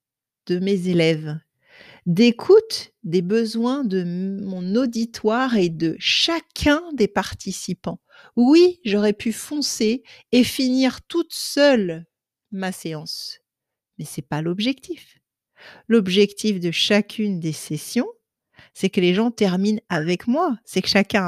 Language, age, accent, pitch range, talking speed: French, 50-69, French, 190-275 Hz, 125 wpm